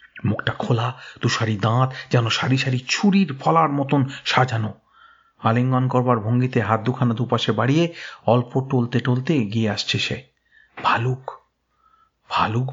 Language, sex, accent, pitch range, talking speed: Bengali, male, native, 120-155 Hz, 125 wpm